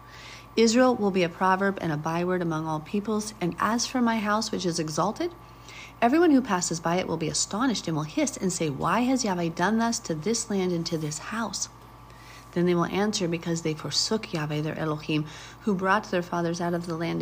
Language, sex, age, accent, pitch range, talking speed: English, female, 40-59, American, 160-215 Hz, 215 wpm